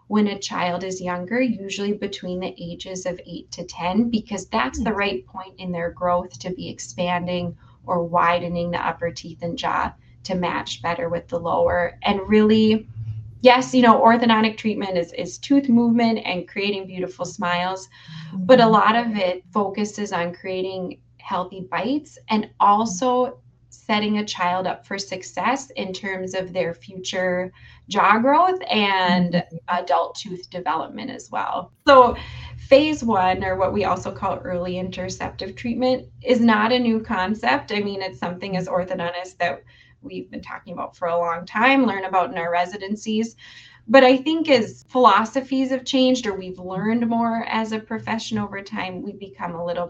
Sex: female